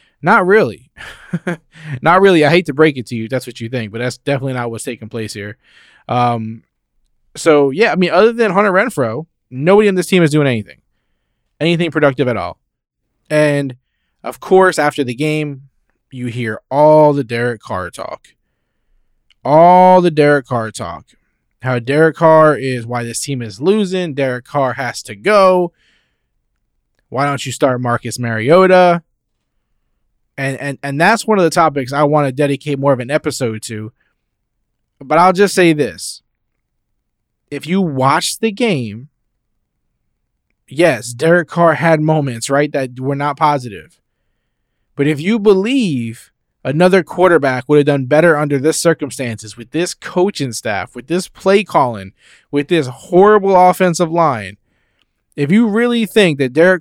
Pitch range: 125-175 Hz